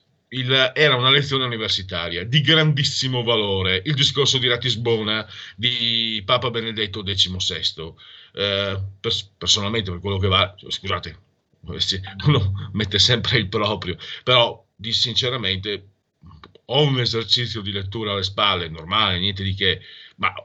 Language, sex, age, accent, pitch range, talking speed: Italian, male, 40-59, native, 95-125 Hz, 125 wpm